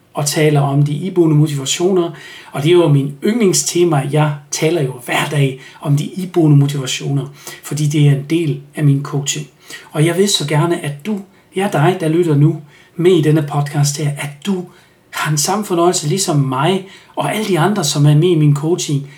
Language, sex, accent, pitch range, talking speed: Danish, male, native, 145-175 Hz, 205 wpm